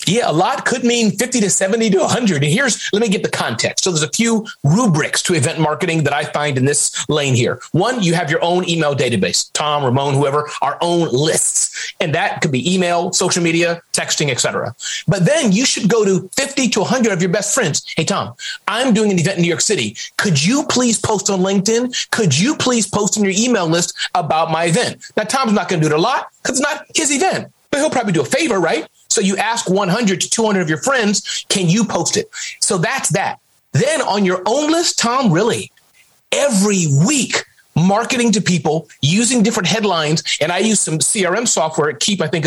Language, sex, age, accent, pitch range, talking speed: English, male, 30-49, American, 165-225 Hz, 220 wpm